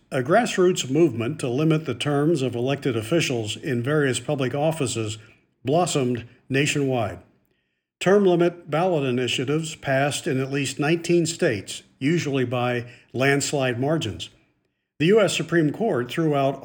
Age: 50-69